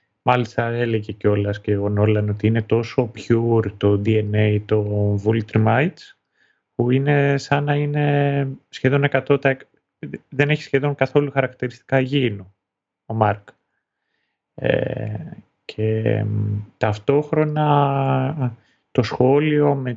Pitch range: 105-130 Hz